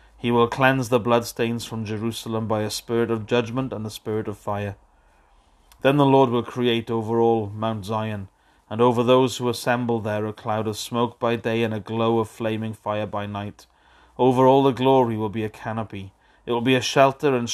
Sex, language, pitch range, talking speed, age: male, English, 105-120 Hz, 205 wpm, 30-49